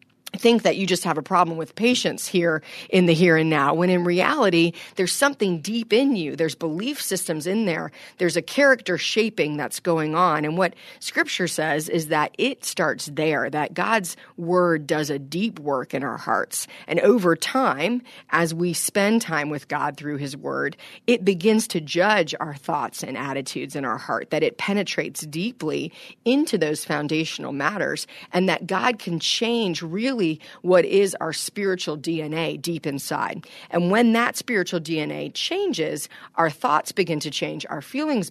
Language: English